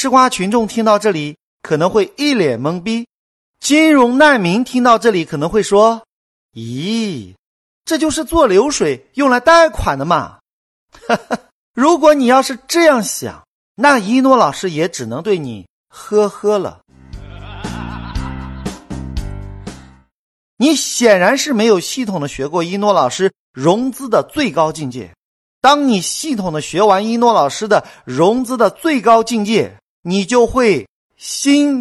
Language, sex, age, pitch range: Chinese, male, 50-69, 165-265 Hz